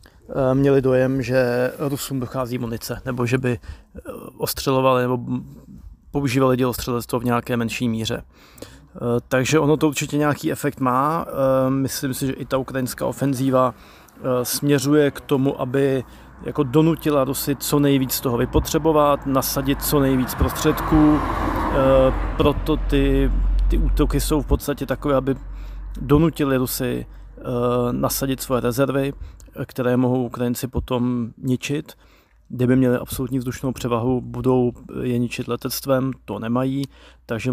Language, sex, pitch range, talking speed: Slovak, male, 120-135 Hz, 125 wpm